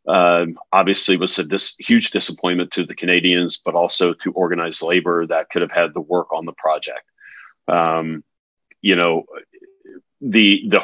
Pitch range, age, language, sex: 85-95 Hz, 40-59, English, male